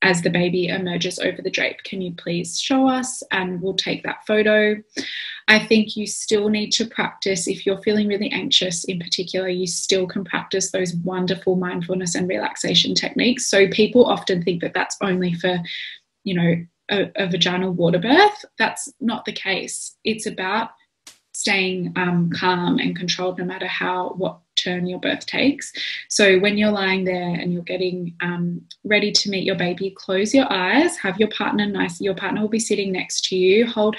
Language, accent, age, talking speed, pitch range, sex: English, Australian, 20-39, 185 wpm, 180-220 Hz, female